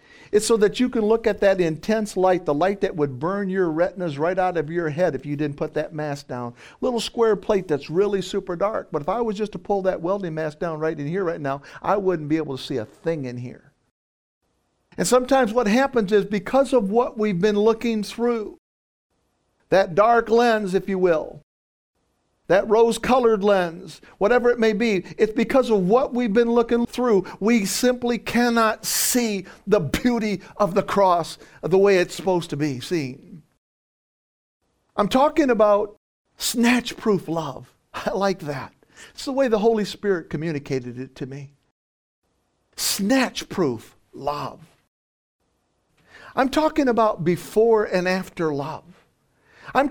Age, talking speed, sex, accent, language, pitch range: 50-69, 165 wpm, male, American, English, 160-230 Hz